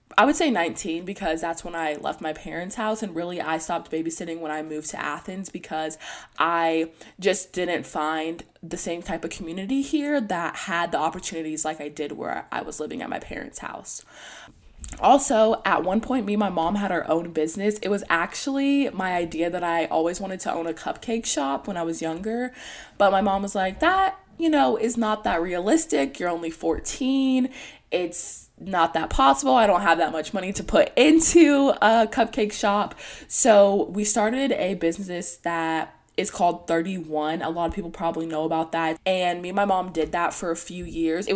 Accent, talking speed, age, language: American, 200 wpm, 20-39, English